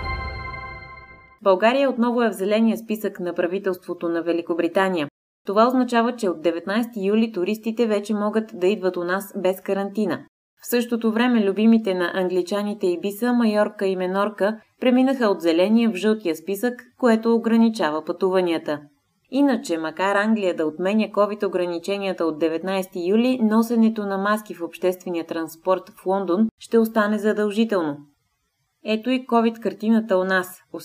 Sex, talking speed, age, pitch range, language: female, 135 wpm, 20-39, 175-220 Hz, Bulgarian